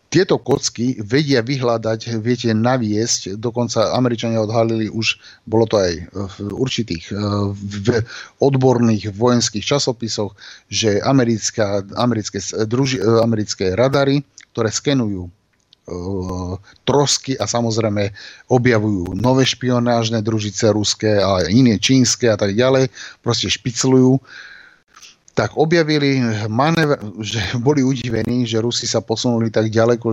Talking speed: 110 wpm